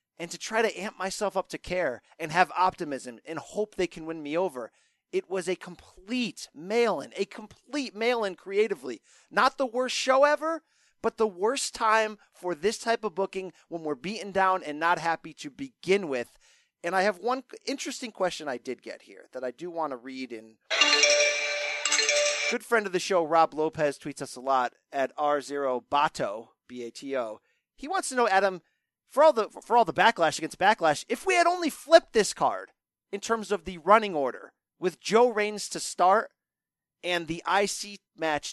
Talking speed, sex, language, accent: 185 wpm, male, English, American